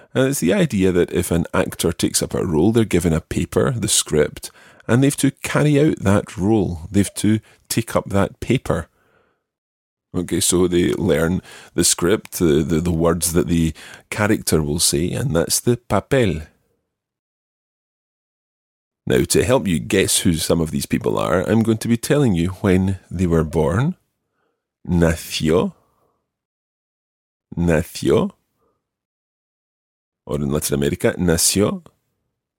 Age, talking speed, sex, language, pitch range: 30-49, 145 wpm, male, English, 80-100 Hz